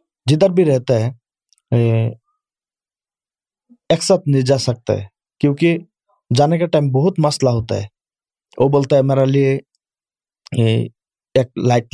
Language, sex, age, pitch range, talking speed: Urdu, male, 20-39, 120-140 Hz, 125 wpm